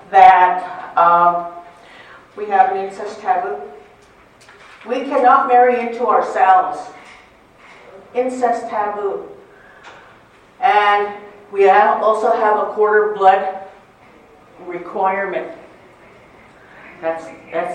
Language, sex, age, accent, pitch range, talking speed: English, female, 50-69, American, 175-220 Hz, 80 wpm